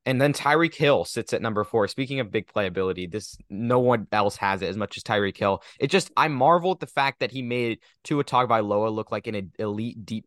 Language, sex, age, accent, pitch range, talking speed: English, male, 20-39, American, 100-130 Hz, 250 wpm